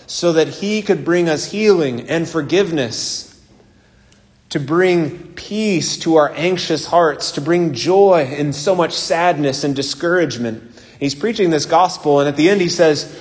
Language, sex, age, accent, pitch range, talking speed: English, male, 30-49, American, 140-175 Hz, 160 wpm